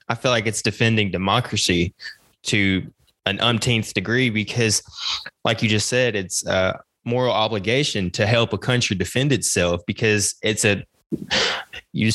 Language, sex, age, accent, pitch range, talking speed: English, male, 20-39, American, 105-125 Hz, 145 wpm